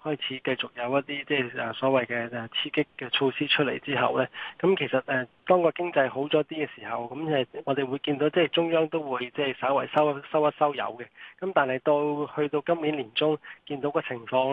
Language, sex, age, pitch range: Chinese, male, 20-39, 125-150 Hz